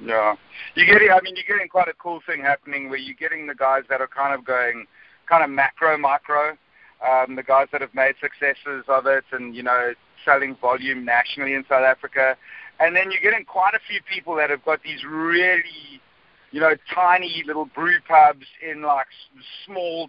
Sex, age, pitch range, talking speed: male, 50-69, 135-170 Hz, 195 wpm